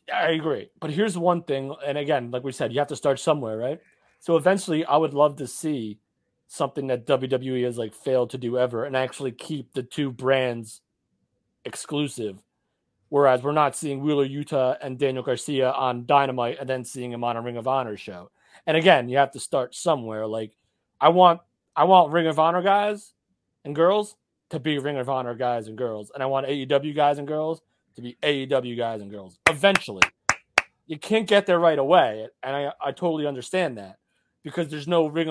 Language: English